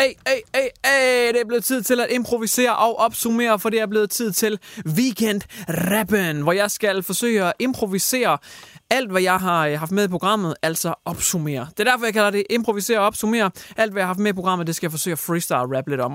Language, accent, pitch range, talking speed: English, Danish, 155-215 Hz, 235 wpm